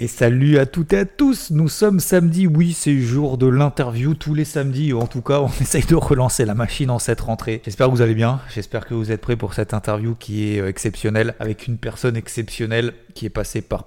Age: 30-49